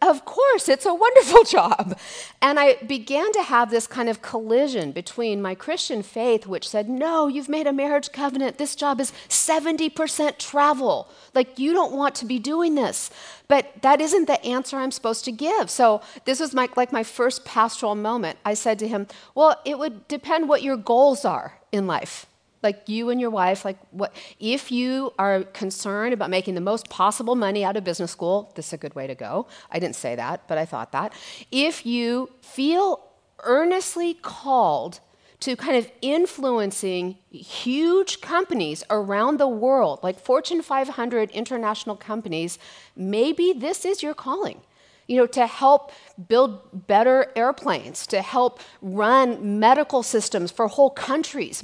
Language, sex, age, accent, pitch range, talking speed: English, female, 40-59, American, 200-280 Hz, 170 wpm